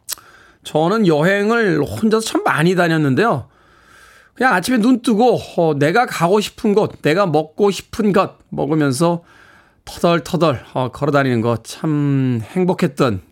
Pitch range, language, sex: 135-195 Hz, Korean, male